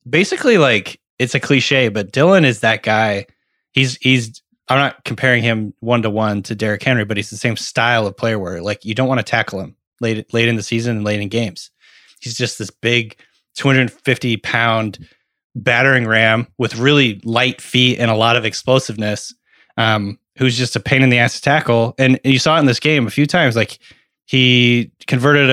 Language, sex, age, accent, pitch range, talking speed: English, male, 20-39, American, 110-130 Hz, 200 wpm